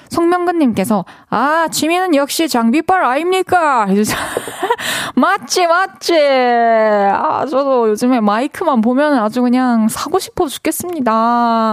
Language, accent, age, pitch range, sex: Korean, native, 20-39, 190-280 Hz, female